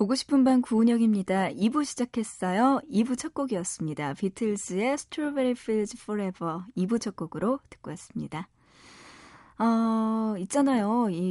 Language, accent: Korean, native